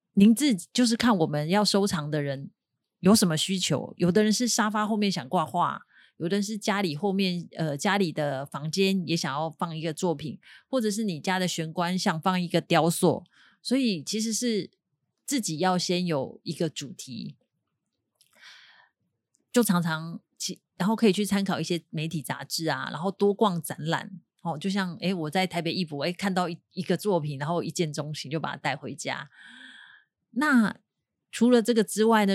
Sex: female